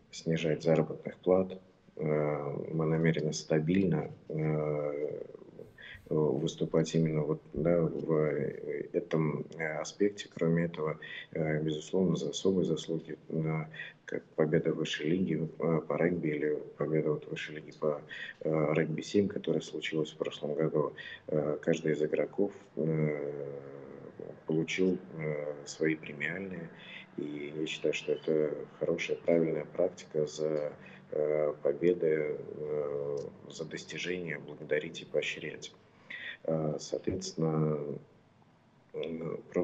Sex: male